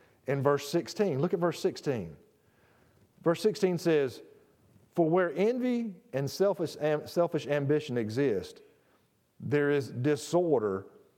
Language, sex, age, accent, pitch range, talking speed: English, male, 50-69, American, 115-155 Hz, 105 wpm